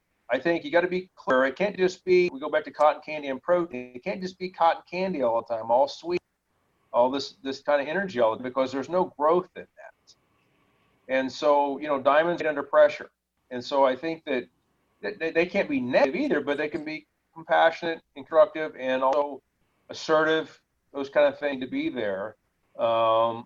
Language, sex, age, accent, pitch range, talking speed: English, male, 40-59, American, 125-165 Hz, 205 wpm